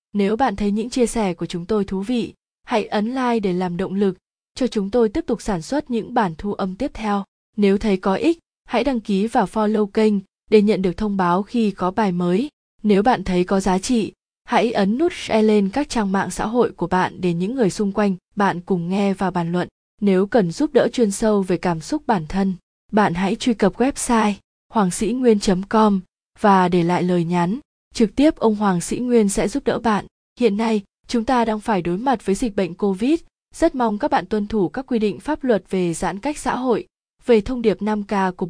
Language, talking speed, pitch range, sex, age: Vietnamese, 225 wpm, 190-230 Hz, female, 20-39